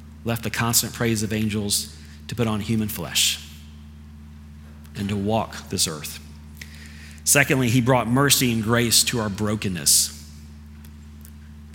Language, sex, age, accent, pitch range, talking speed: English, male, 40-59, American, 75-120 Hz, 135 wpm